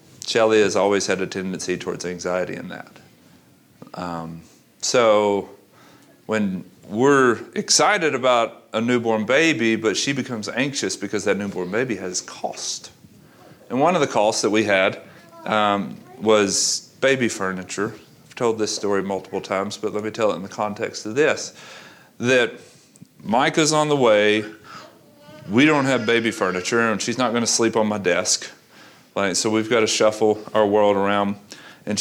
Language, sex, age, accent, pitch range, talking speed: English, male, 40-59, American, 105-130 Hz, 160 wpm